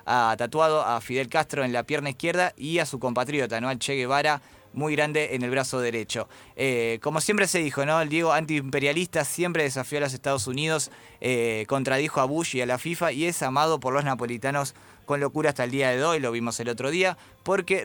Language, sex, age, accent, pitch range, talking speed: Spanish, male, 20-39, Argentinian, 125-160 Hz, 220 wpm